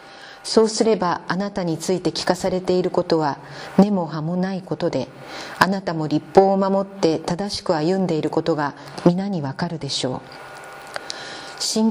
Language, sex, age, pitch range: Japanese, female, 40-59, 155-195 Hz